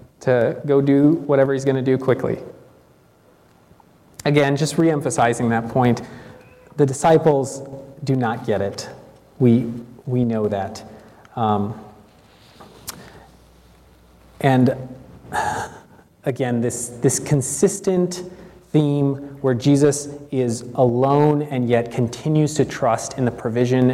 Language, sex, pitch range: English, male, 120-150 Hz